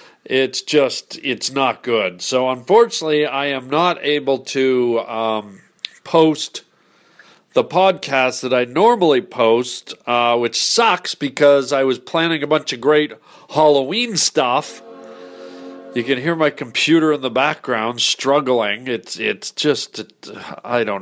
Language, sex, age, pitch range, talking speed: English, male, 40-59, 125-155 Hz, 135 wpm